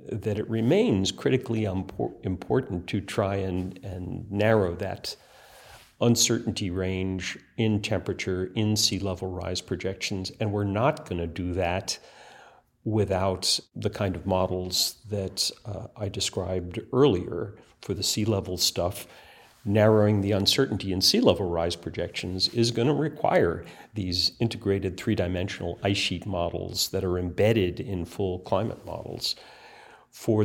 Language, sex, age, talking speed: English, male, 50-69, 135 wpm